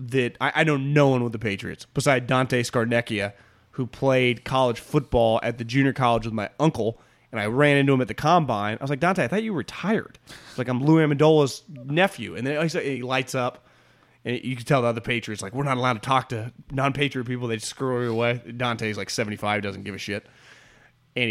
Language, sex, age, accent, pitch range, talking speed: English, male, 30-49, American, 120-195 Hz, 235 wpm